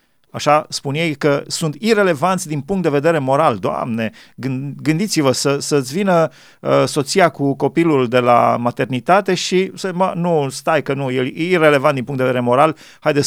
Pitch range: 130-160 Hz